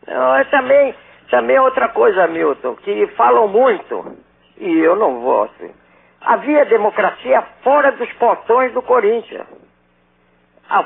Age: 50-69